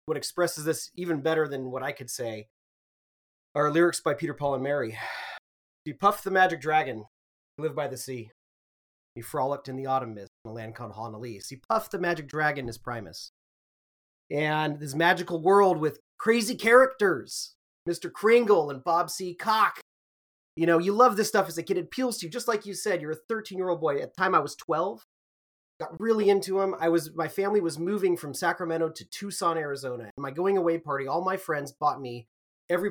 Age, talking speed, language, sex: 30-49, 200 wpm, English, male